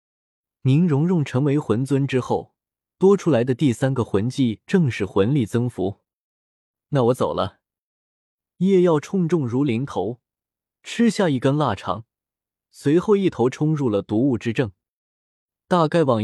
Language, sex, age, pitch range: Chinese, male, 20-39, 105-160 Hz